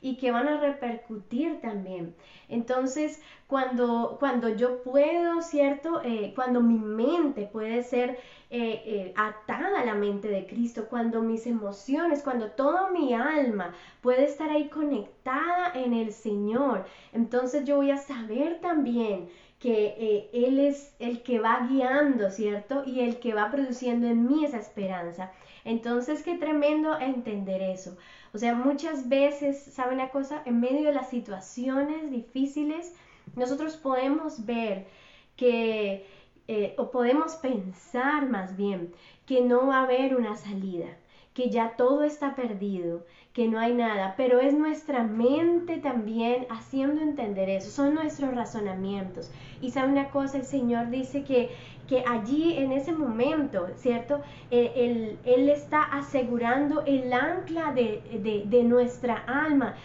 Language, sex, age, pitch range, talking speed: Spanish, female, 10-29, 225-280 Hz, 145 wpm